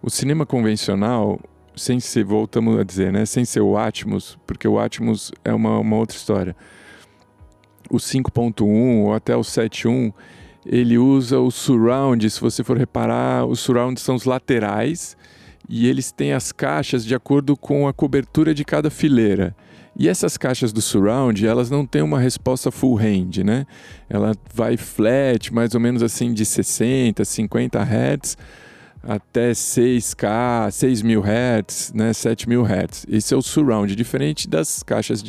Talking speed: 155 wpm